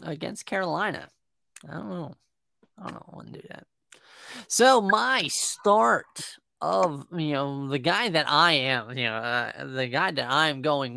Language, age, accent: English, 20-39, American